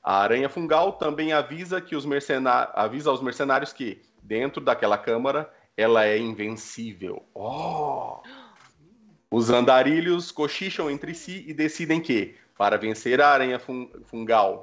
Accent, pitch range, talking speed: Brazilian, 120-155 Hz, 105 wpm